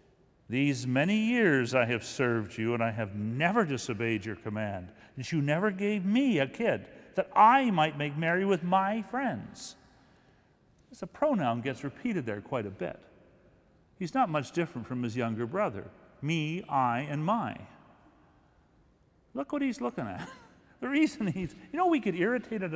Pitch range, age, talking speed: 110-175 Hz, 50-69, 165 wpm